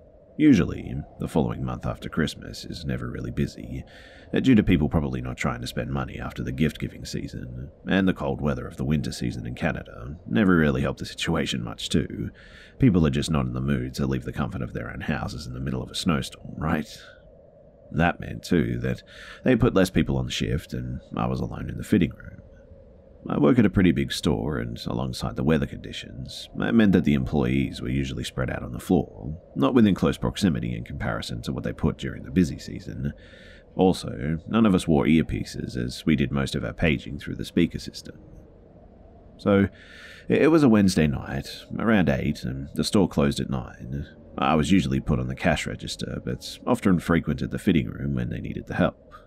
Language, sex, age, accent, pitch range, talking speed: English, male, 30-49, Australian, 65-80 Hz, 205 wpm